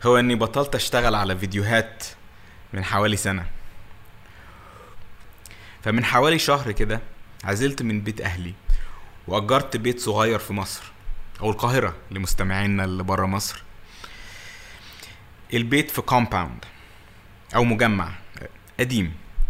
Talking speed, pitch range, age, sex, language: 105 wpm, 95-115 Hz, 20-39, male, Arabic